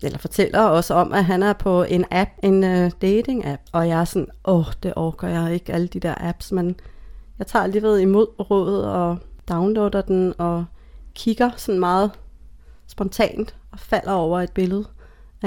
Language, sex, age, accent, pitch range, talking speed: Danish, female, 30-49, native, 175-215 Hz, 180 wpm